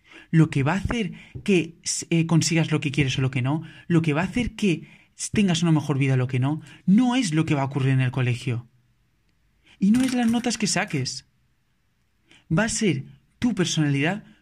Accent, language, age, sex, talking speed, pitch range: Spanish, Spanish, 30-49, male, 210 wpm, 130-170 Hz